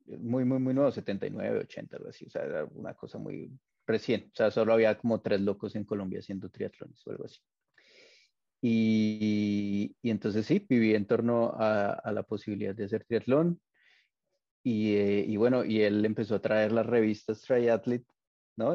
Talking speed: 180 wpm